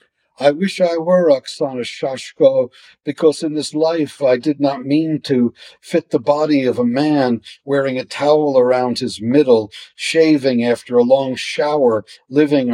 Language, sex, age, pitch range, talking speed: English, male, 60-79, 115-140 Hz, 155 wpm